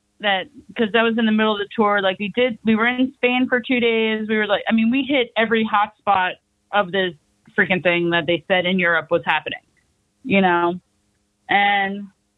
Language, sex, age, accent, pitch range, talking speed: English, female, 30-49, American, 195-235 Hz, 215 wpm